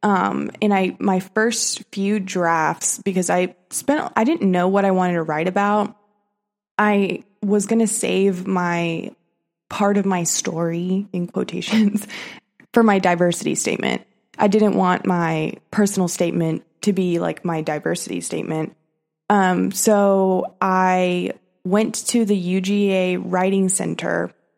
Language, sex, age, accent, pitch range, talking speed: English, female, 20-39, American, 180-210 Hz, 135 wpm